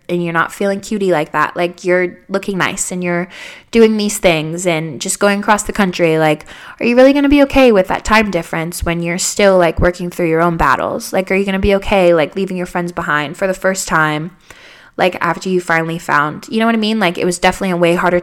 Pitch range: 170-205 Hz